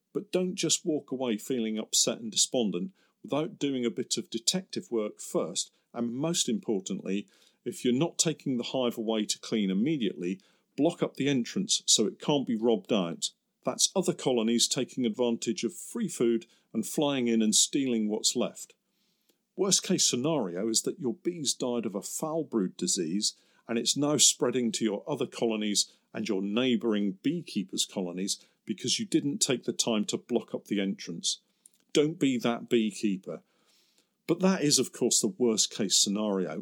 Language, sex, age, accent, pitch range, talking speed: English, male, 50-69, British, 115-160 Hz, 170 wpm